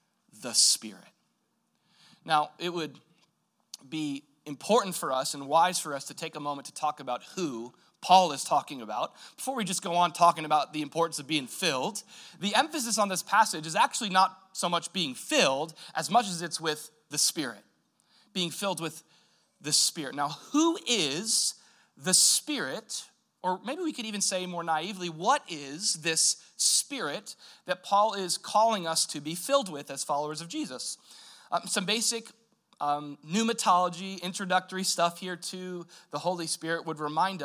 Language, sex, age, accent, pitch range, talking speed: English, male, 30-49, American, 160-210 Hz, 170 wpm